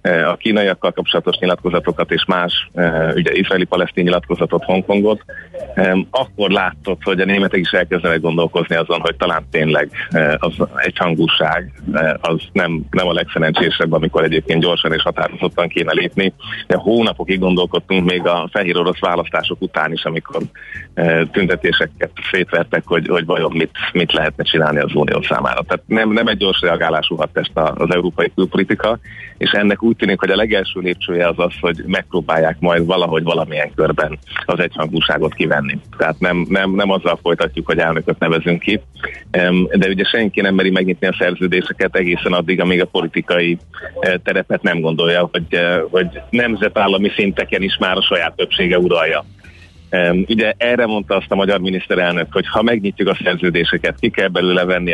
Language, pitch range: Hungarian, 85-95 Hz